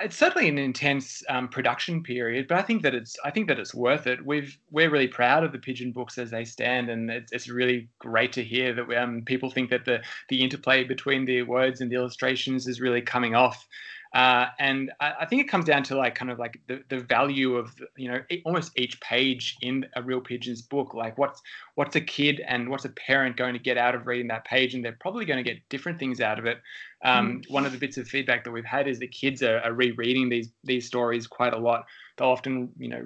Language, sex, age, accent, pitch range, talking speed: English, male, 20-39, Australian, 120-130 Hz, 245 wpm